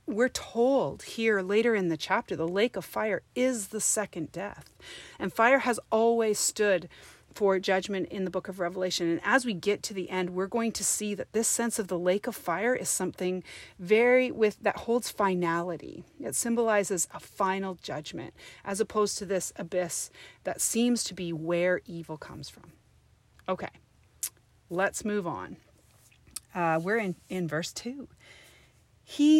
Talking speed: 165 wpm